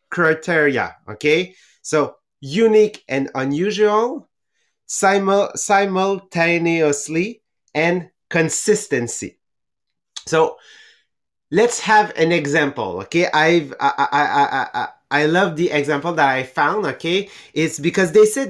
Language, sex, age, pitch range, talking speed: English, male, 30-49, 145-195 Hz, 105 wpm